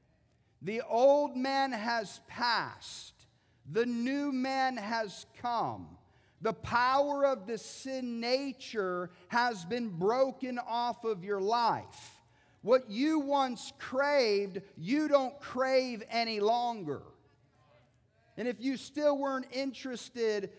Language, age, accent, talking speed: English, 50-69, American, 110 wpm